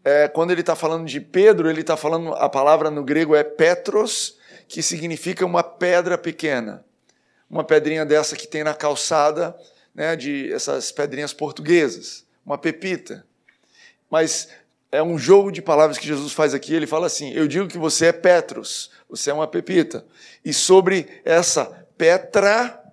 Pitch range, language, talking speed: 150-175 Hz, Portuguese, 155 wpm